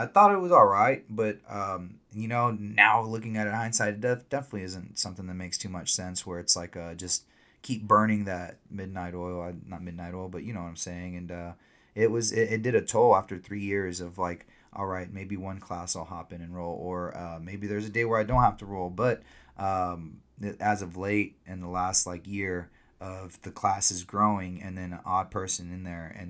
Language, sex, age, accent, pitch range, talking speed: English, male, 30-49, American, 90-100 Hz, 225 wpm